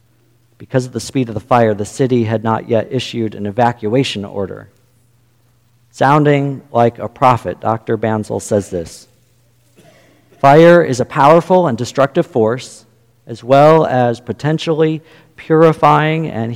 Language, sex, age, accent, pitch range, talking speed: English, male, 50-69, American, 115-150 Hz, 135 wpm